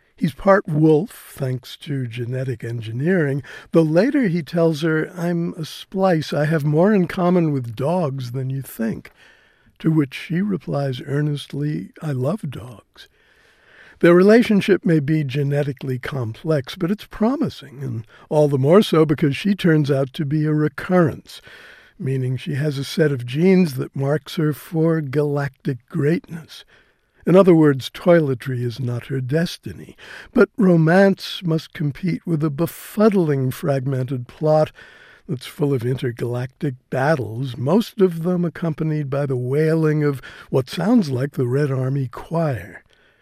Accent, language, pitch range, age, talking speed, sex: American, English, 135-170 Hz, 60-79, 145 wpm, male